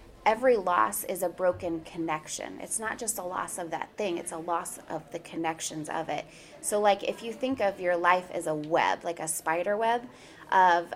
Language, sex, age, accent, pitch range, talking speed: English, female, 20-39, American, 170-210 Hz, 210 wpm